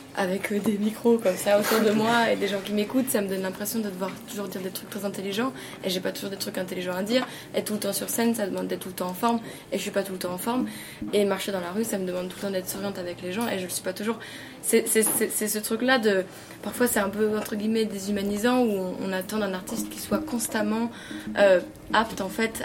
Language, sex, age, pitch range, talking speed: French, female, 20-39, 185-220 Hz, 285 wpm